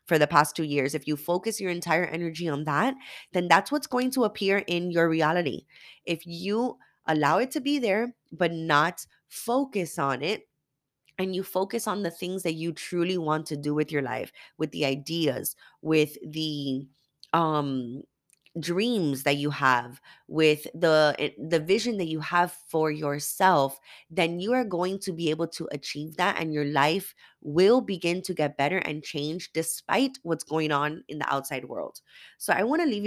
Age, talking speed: 20-39, 185 wpm